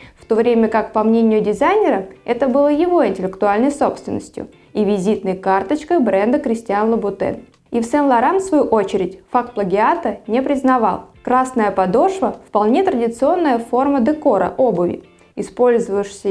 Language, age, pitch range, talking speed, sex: Russian, 20-39, 205-290 Hz, 130 wpm, female